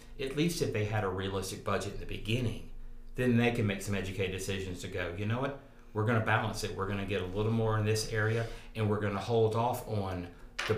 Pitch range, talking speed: 95-110 Hz, 255 wpm